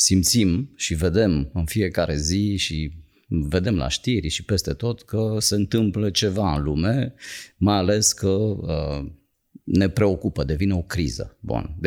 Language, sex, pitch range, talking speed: Romanian, male, 75-105 Hz, 140 wpm